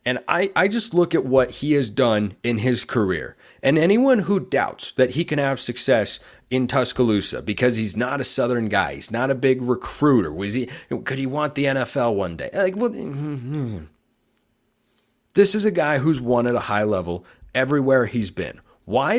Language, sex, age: English, male, 30-49